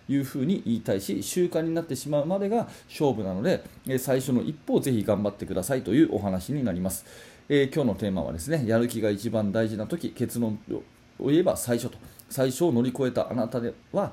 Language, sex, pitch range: Japanese, male, 105-135 Hz